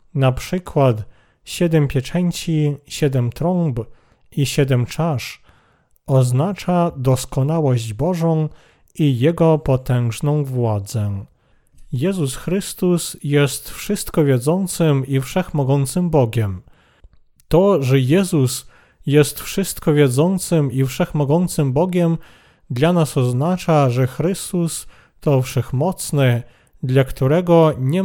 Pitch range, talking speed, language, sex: 130-165 Hz, 90 wpm, Polish, male